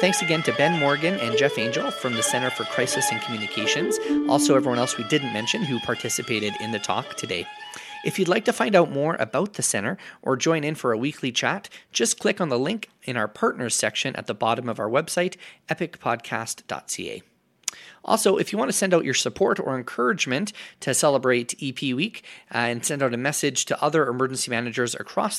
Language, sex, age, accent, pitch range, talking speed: English, male, 30-49, American, 125-170 Hz, 200 wpm